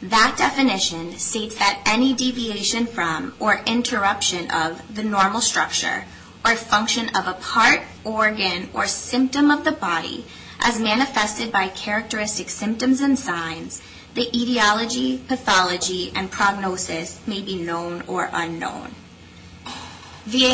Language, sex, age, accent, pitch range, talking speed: English, female, 20-39, American, 185-245 Hz, 125 wpm